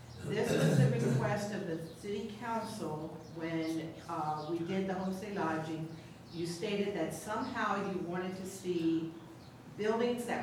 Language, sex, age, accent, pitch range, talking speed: English, female, 50-69, American, 160-195 Hz, 145 wpm